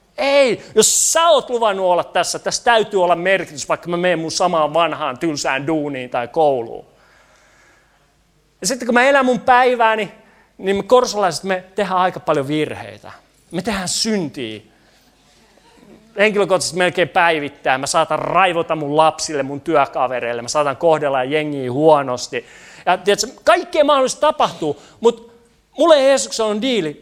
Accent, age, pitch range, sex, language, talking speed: native, 30-49, 150-210 Hz, male, Finnish, 140 wpm